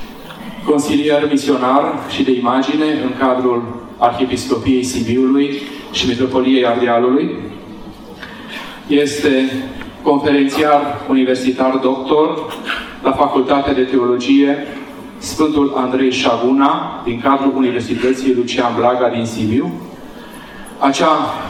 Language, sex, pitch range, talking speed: Romanian, male, 125-140 Hz, 85 wpm